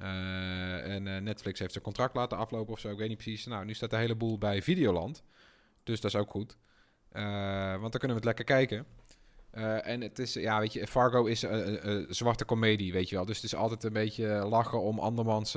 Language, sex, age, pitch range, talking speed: Dutch, male, 20-39, 105-125 Hz, 225 wpm